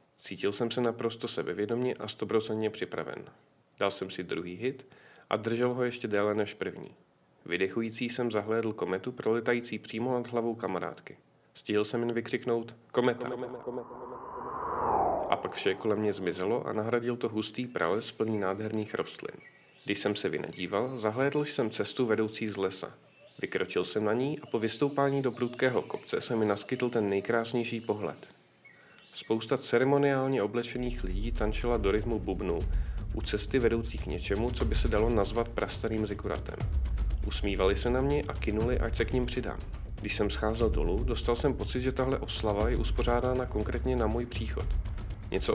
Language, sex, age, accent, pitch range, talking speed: Czech, male, 40-59, native, 105-125 Hz, 165 wpm